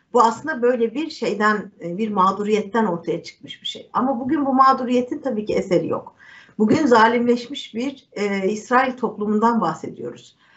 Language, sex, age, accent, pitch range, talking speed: Turkish, female, 50-69, native, 210-250 Hz, 150 wpm